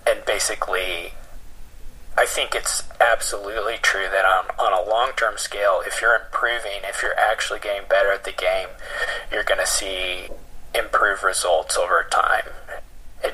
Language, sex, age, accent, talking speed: English, male, 20-39, American, 150 wpm